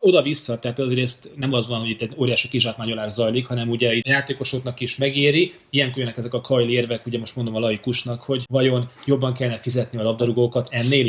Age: 20-39